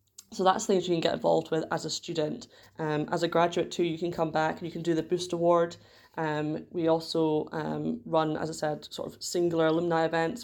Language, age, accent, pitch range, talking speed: English, 20-39, British, 155-175 Hz, 230 wpm